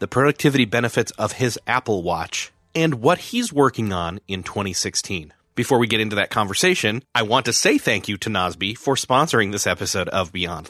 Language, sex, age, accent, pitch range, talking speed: English, male, 30-49, American, 95-125 Hz, 190 wpm